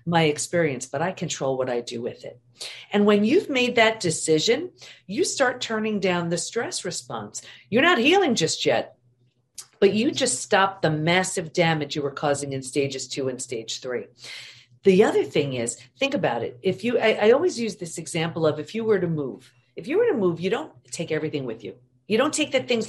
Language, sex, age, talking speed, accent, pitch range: English, female, 40-59, 210 wpm, American, 135-220 Hz